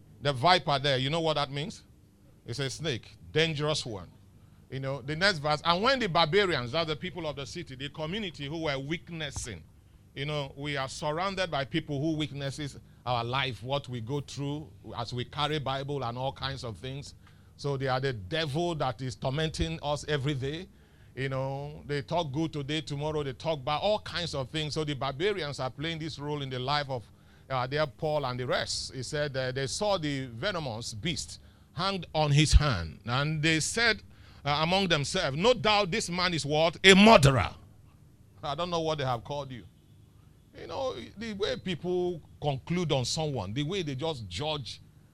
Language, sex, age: English, male, 40-59